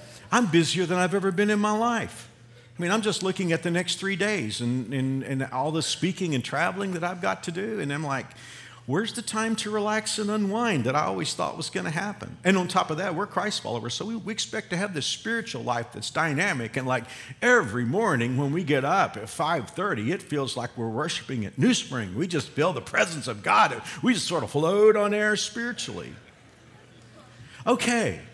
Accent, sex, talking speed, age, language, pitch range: American, male, 220 wpm, 50-69, English, 125-200 Hz